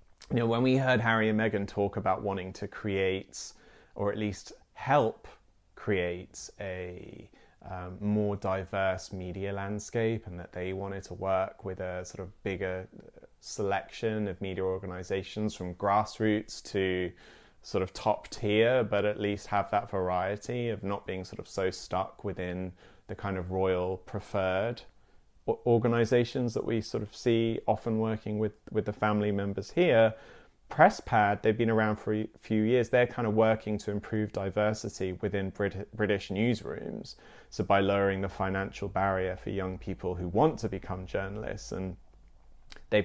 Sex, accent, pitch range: male, British, 95-115 Hz